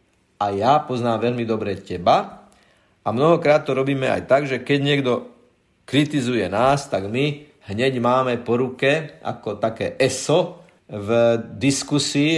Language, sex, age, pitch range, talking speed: Slovak, male, 50-69, 115-145 Hz, 130 wpm